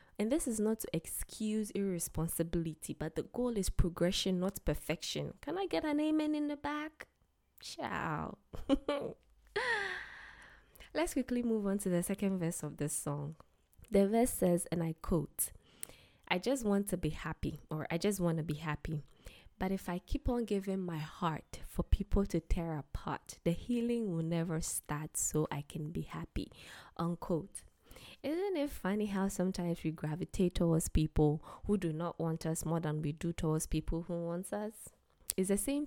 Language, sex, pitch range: English, female, 160-205 Hz